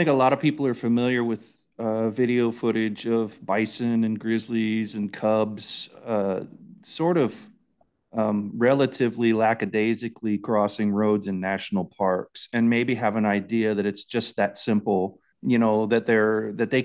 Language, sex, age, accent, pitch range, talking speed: English, male, 30-49, American, 105-125 Hz, 160 wpm